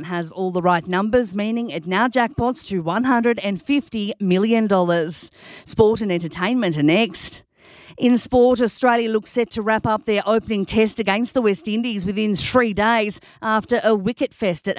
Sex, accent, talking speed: female, Australian, 160 wpm